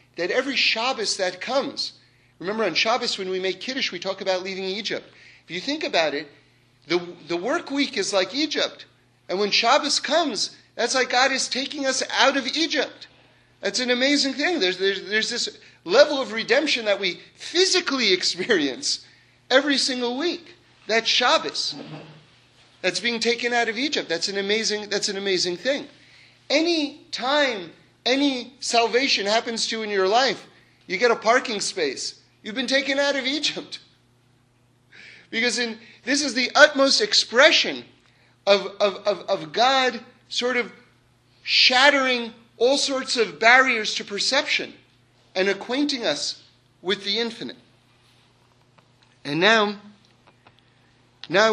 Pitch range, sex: 185-265 Hz, male